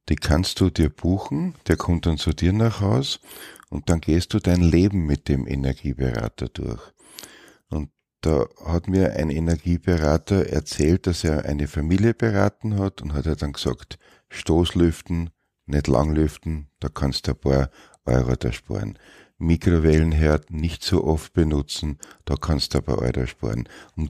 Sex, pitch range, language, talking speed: male, 70-85 Hz, German, 160 wpm